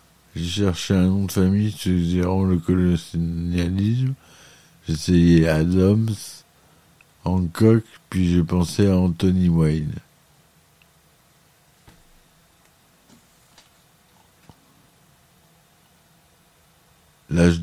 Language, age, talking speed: French, 60-79, 65 wpm